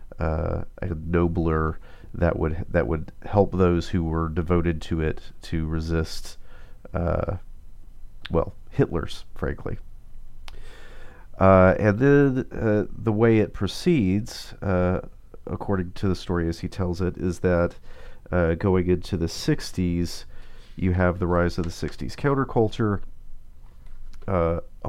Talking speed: 130 wpm